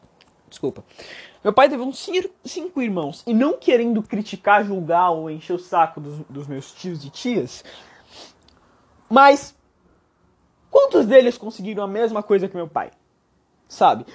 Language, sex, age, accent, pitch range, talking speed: Portuguese, male, 20-39, Brazilian, 180-245 Hz, 140 wpm